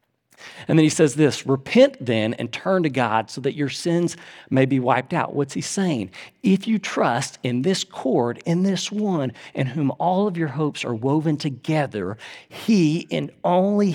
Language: English